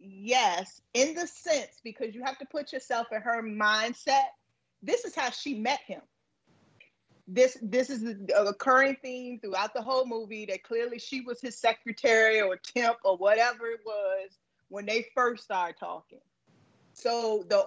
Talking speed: 165 wpm